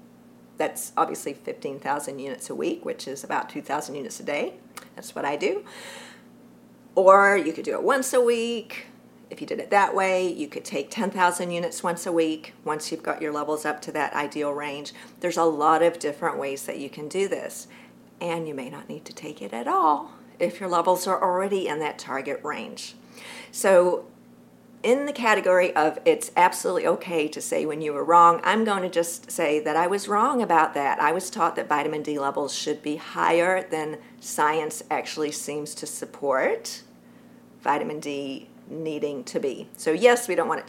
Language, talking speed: English, 190 wpm